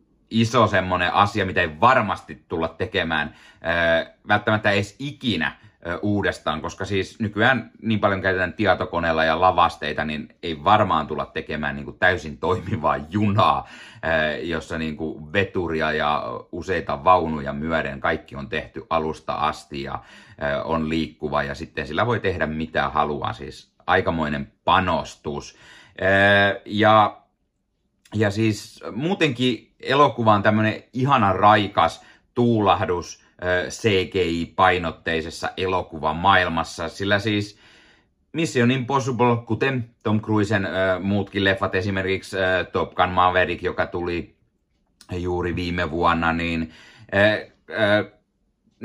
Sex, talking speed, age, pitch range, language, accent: male, 110 wpm, 30-49, 80-110 Hz, Finnish, native